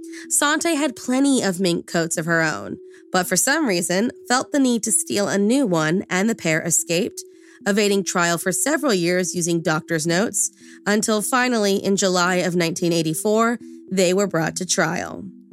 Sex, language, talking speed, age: female, English, 170 wpm, 20-39